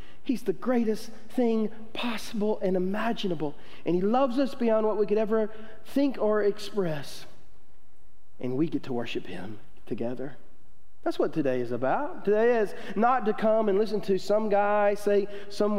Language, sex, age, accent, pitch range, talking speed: English, male, 40-59, American, 145-235 Hz, 165 wpm